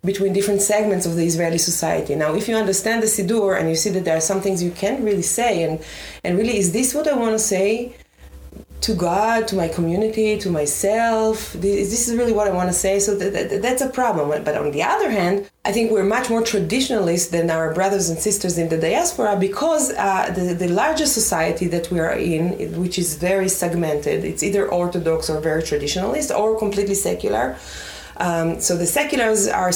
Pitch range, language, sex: 175-225 Hz, English, female